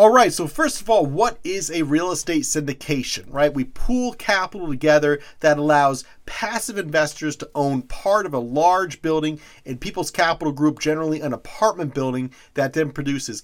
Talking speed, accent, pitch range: 175 wpm, American, 130-160 Hz